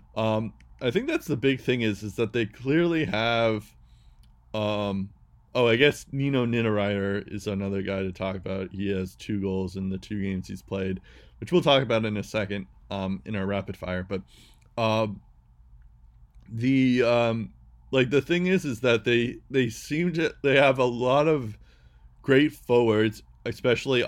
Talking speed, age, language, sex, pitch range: 170 wpm, 20-39, English, male, 95-120 Hz